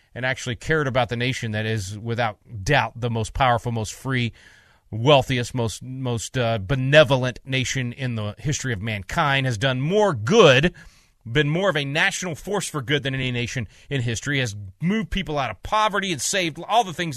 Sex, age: male, 30-49